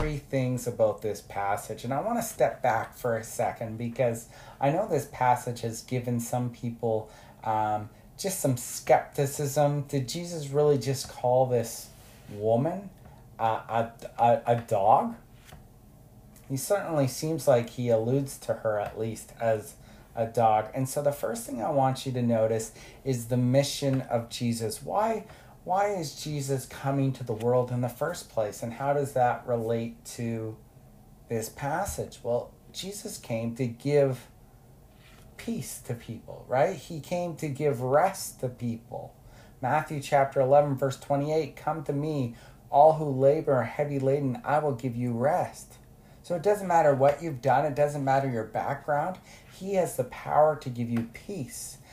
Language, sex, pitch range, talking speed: English, male, 115-145 Hz, 165 wpm